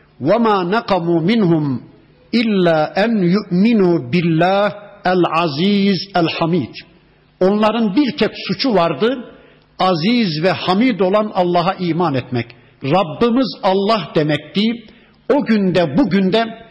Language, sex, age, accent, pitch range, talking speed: Turkish, male, 60-79, native, 175-210 Hz, 105 wpm